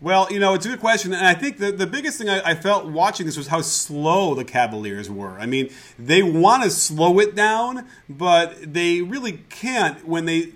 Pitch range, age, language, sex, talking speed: 130-165 Hz, 30-49, English, male, 220 wpm